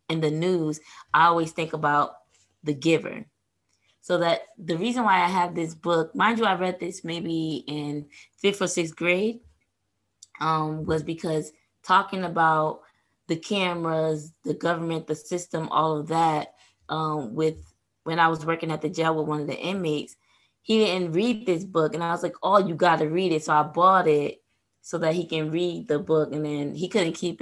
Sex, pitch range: female, 150-175 Hz